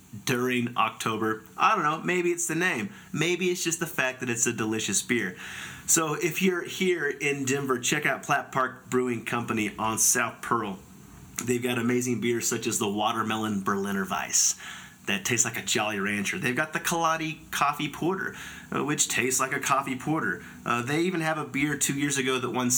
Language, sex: English, male